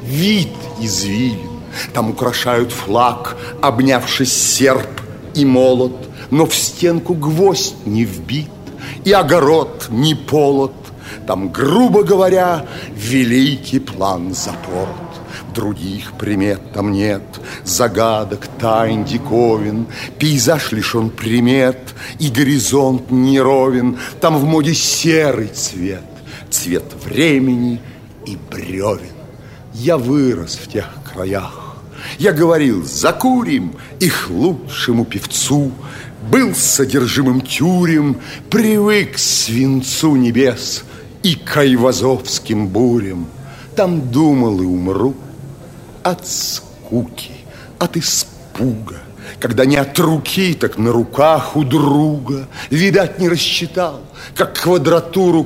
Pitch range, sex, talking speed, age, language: 115-150 Hz, male, 100 wpm, 60-79, Russian